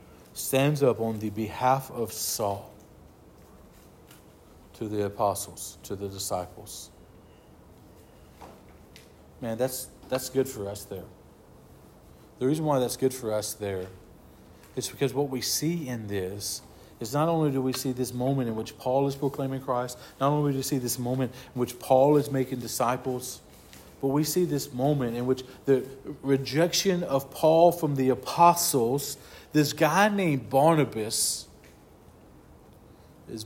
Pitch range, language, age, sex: 100-140 Hz, English, 50-69, male